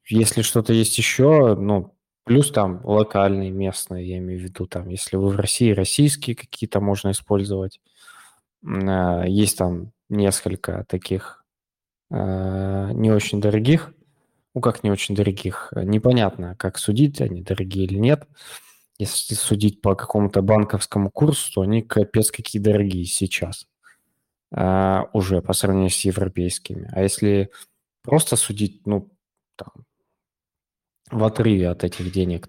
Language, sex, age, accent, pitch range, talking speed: Russian, male, 20-39, native, 95-110 Hz, 125 wpm